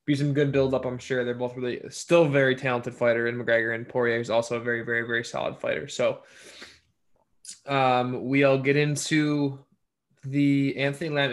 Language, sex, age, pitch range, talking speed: English, male, 10-29, 120-150 Hz, 175 wpm